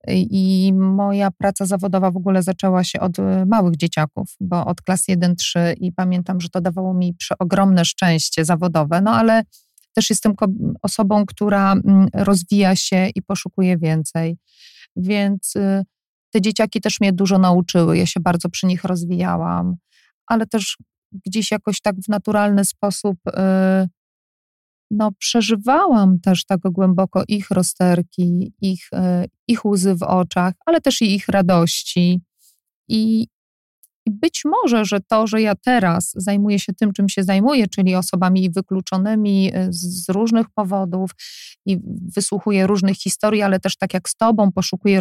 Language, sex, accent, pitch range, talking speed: Polish, female, native, 185-215 Hz, 140 wpm